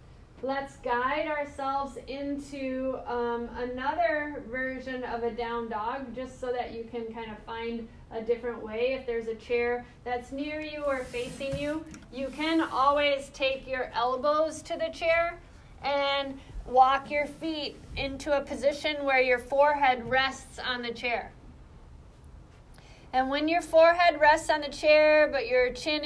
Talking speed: 150 wpm